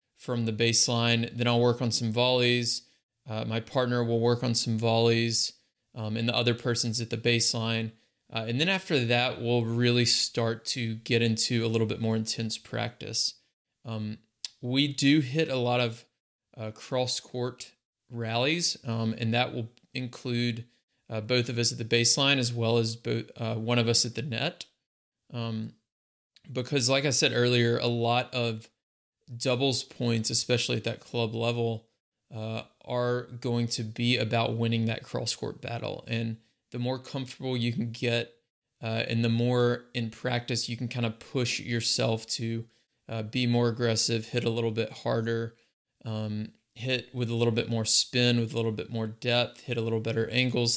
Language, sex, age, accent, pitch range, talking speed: English, male, 20-39, American, 115-125 Hz, 175 wpm